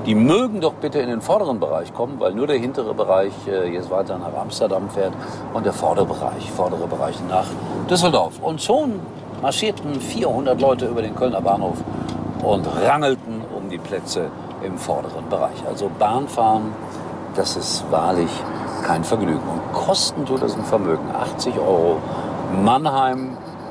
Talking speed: 155 wpm